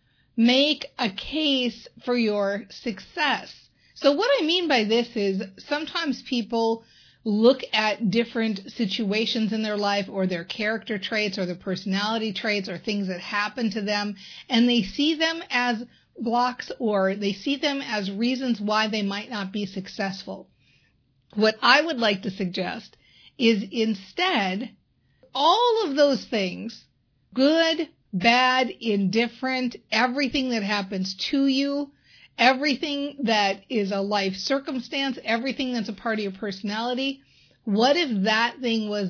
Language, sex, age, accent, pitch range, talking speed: English, female, 50-69, American, 200-260 Hz, 140 wpm